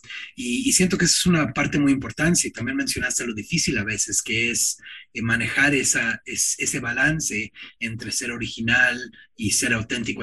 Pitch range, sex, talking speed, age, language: 105-140 Hz, male, 175 wpm, 30-49, English